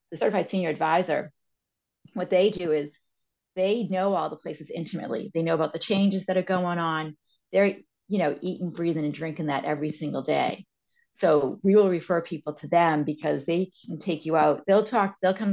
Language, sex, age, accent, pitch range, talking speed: English, female, 40-59, American, 150-180 Hz, 195 wpm